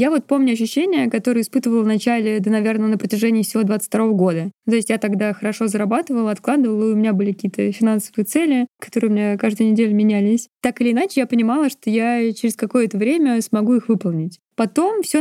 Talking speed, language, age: 195 wpm, Russian, 20-39